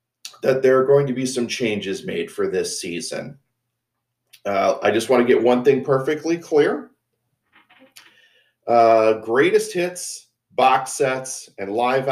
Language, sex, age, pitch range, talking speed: English, male, 40-59, 110-140 Hz, 145 wpm